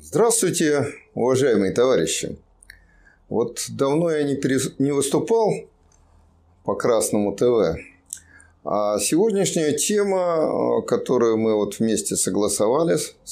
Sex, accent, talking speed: male, native, 95 wpm